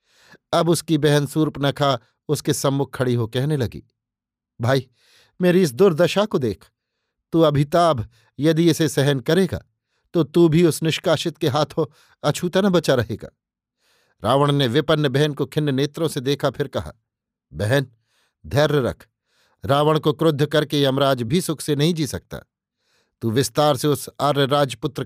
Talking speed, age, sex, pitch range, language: 150 wpm, 50-69, male, 140-165 Hz, Hindi